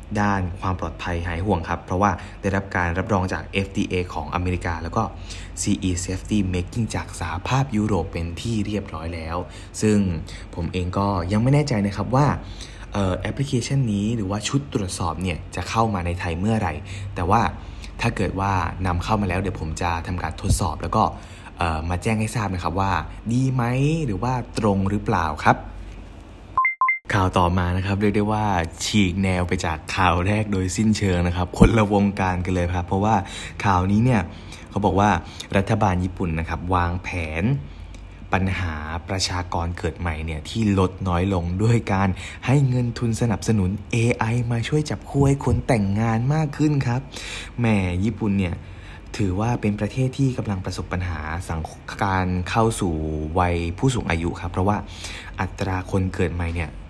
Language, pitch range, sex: Thai, 90-110 Hz, male